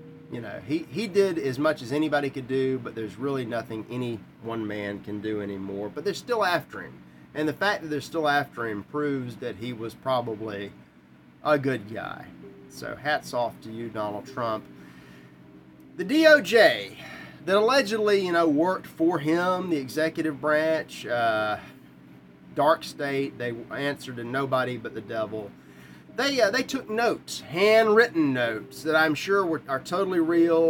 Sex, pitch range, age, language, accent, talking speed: male, 115-165 Hz, 30-49, English, American, 165 wpm